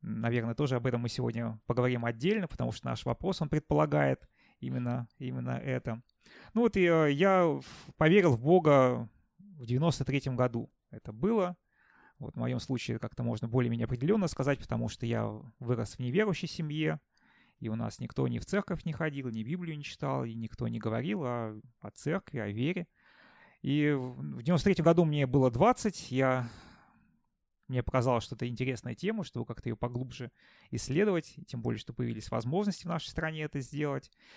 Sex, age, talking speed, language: male, 30-49, 165 wpm, Russian